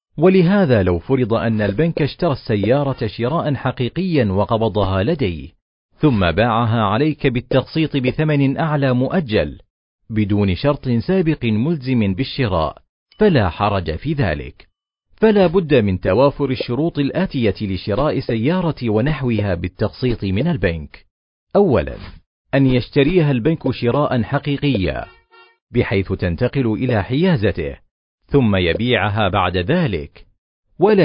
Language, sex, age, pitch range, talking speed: Arabic, male, 40-59, 105-145 Hz, 105 wpm